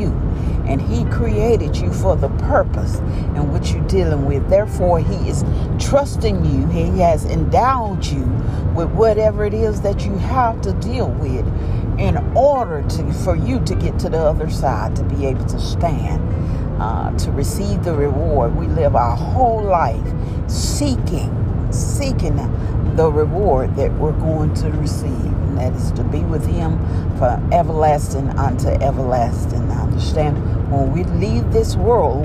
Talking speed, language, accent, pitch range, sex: 155 wpm, English, American, 85-105 Hz, female